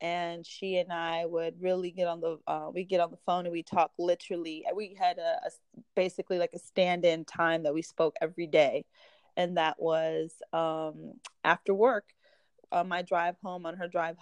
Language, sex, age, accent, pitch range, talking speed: English, female, 20-39, American, 165-185 Hz, 200 wpm